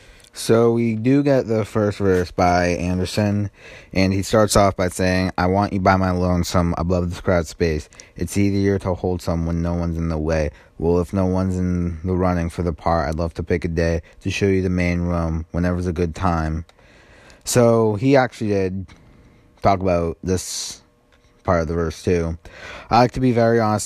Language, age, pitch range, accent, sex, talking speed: English, 20-39, 85-100 Hz, American, male, 205 wpm